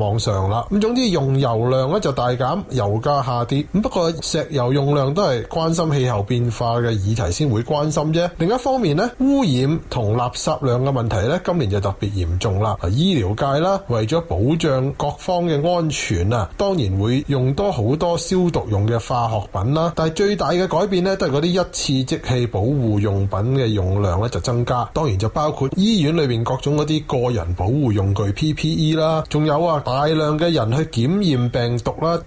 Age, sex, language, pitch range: 20-39, male, Chinese, 115-160 Hz